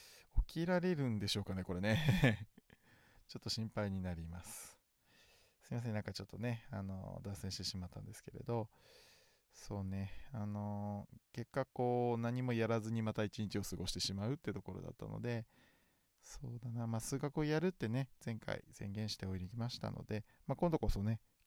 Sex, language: male, Japanese